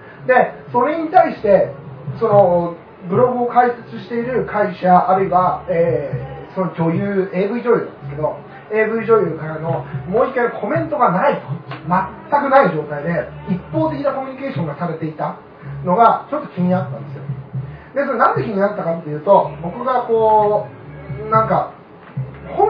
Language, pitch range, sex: Japanese, 160-225 Hz, male